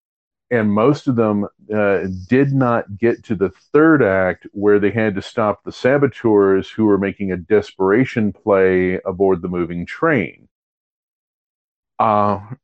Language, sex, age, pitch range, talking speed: English, male, 40-59, 95-110 Hz, 140 wpm